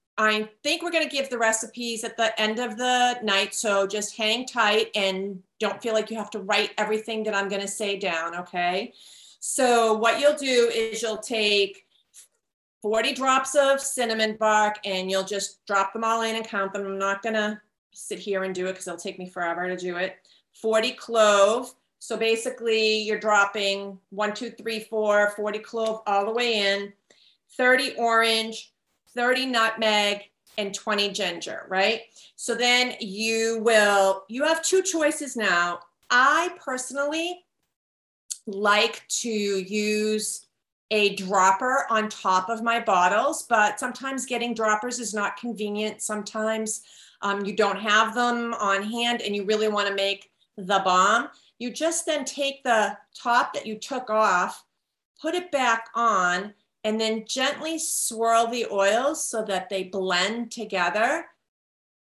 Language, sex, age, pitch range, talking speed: English, female, 40-59, 200-235 Hz, 155 wpm